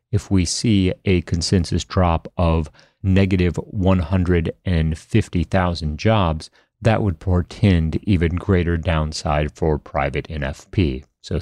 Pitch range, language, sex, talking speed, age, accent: 85-100 Hz, English, male, 105 wpm, 30-49, American